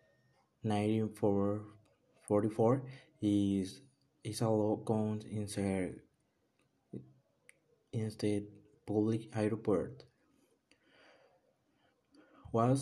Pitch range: 105-125 Hz